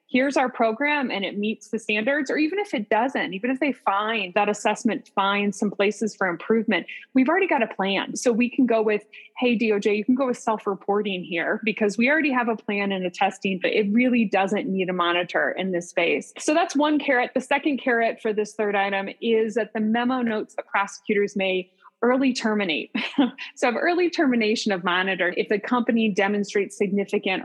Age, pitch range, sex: 20-39, 195-245 Hz, female